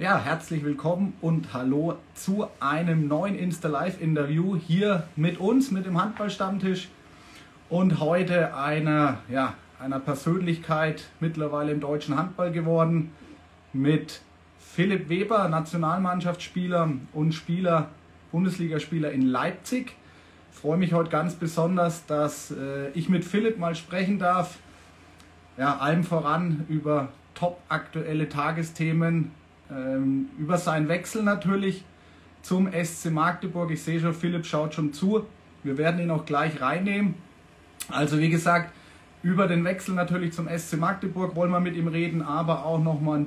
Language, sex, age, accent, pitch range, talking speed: German, male, 30-49, German, 145-175 Hz, 130 wpm